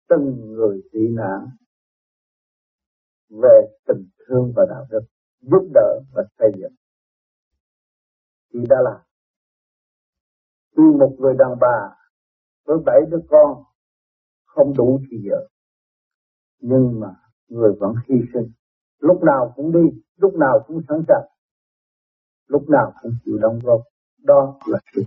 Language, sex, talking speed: Vietnamese, male, 130 wpm